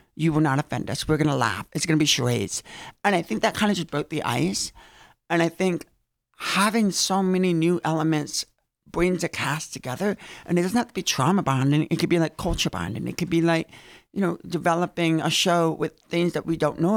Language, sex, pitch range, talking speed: English, male, 150-180 Hz, 230 wpm